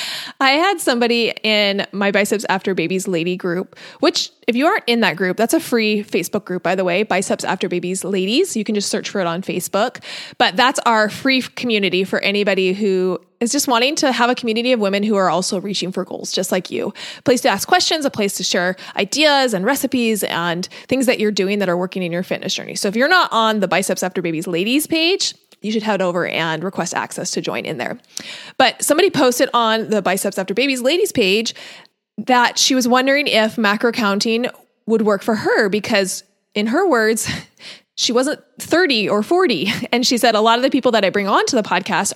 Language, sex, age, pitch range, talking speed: English, female, 30-49, 195-255 Hz, 220 wpm